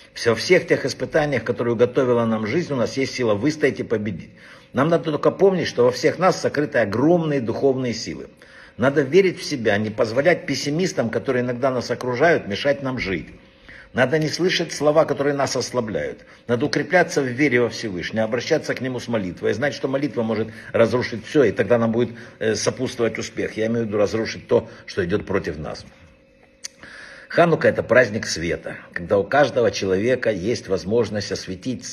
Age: 60-79